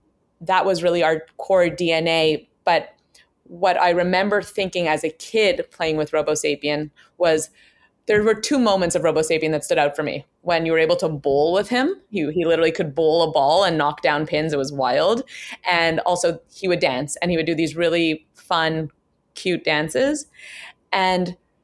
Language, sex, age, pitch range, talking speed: English, female, 20-39, 160-190 Hz, 185 wpm